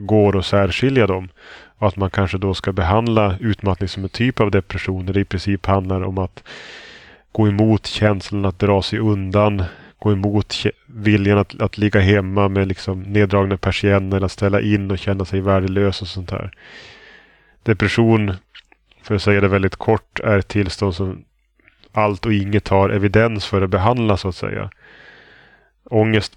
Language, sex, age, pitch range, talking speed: Swedish, male, 20-39, 95-105 Hz, 175 wpm